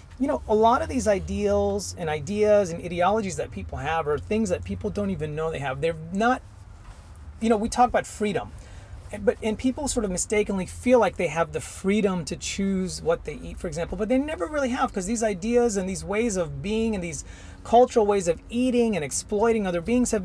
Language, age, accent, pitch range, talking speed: English, 30-49, American, 165-225 Hz, 220 wpm